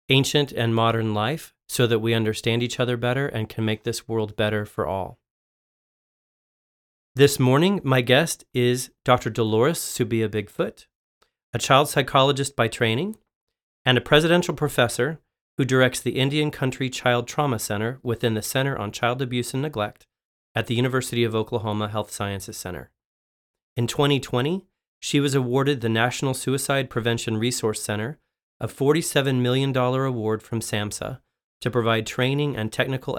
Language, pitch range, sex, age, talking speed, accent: English, 110-135 Hz, male, 40-59, 150 wpm, American